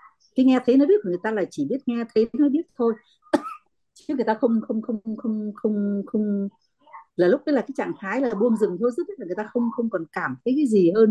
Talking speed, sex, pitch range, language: 260 wpm, female, 195-260 Hz, Vietnamese